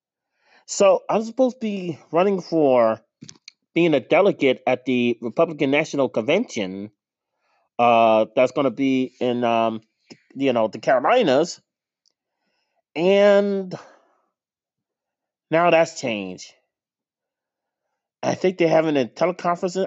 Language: English